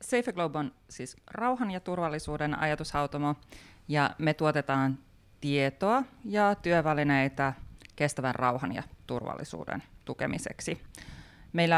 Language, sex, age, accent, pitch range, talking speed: Finnish, female, 30-49, native, 135-170 Hz, 100 wpm